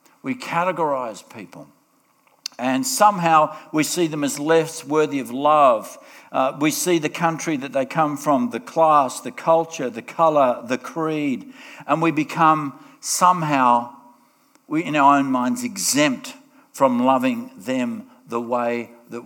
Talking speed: 140 wpm